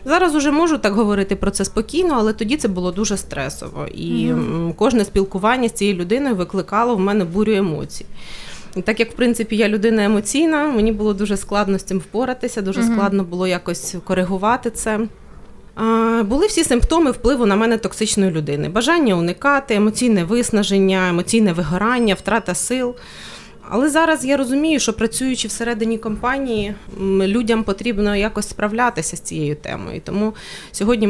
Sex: female